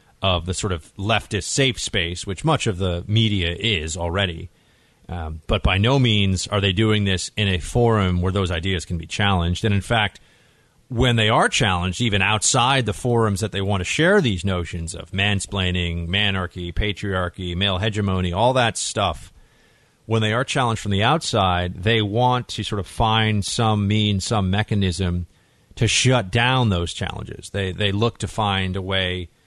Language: English